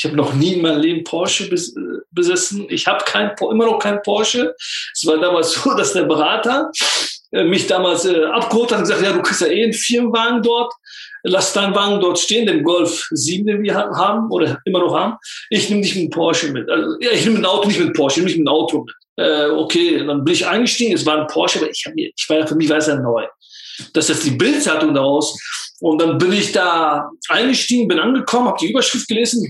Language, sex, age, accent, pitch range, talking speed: German, male, 50-69, German, 165-235 Hz, 230 wpm